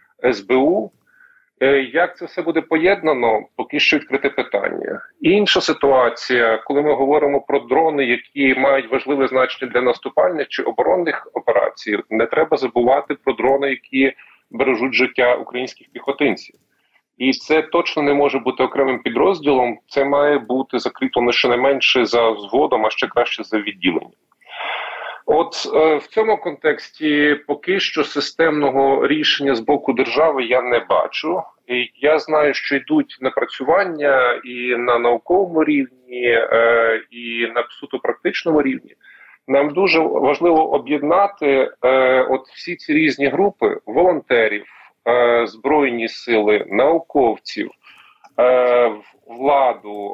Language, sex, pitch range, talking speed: Ukrainian, male, 125-155 Hz, 125 wpm